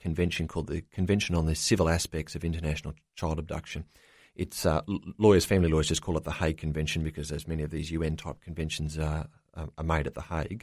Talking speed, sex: 205 wpm, male